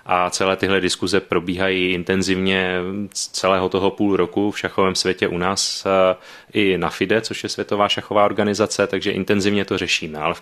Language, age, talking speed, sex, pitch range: Czech, 30-49, 175 wpm, male, 90-100 Hz